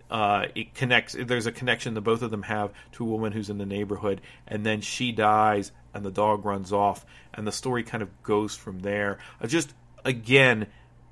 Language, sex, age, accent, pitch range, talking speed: English, male, 40-59, American, 105-125 Hz, 200 wpm